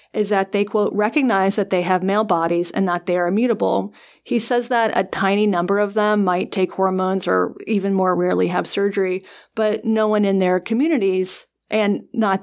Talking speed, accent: 195 wpm, American